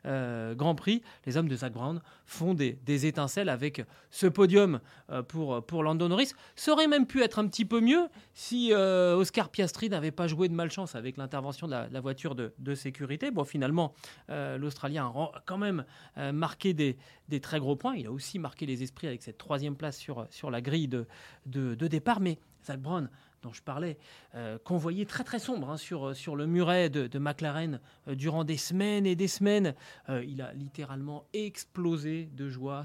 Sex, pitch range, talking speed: male, 135-175 Hz, 205 wpm